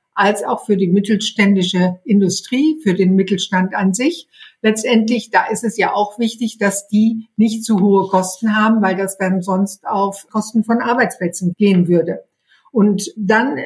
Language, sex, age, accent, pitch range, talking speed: German, female, 60-79, German, 190-230 Hz, 165 wpm